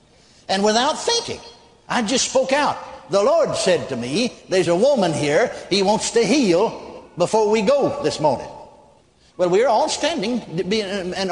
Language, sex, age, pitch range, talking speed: English, male, 60-79, 160-220 Hz, 165 wpm